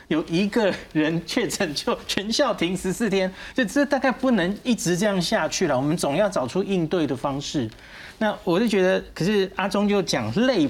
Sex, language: male, Chinese